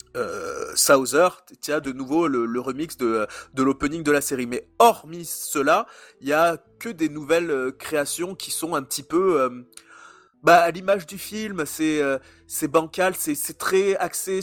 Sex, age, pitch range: male, 30-49, 140-190 Hz